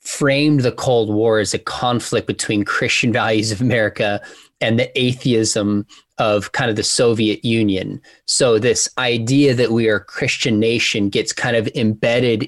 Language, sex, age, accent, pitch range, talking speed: English, male, 20-39, American, 115-140 Hz, 165 wpm